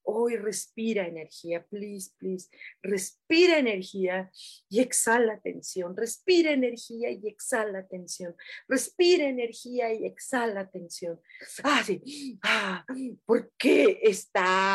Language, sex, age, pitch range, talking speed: Spanish, female, 40-59, 175-280 Hz, 100 wpm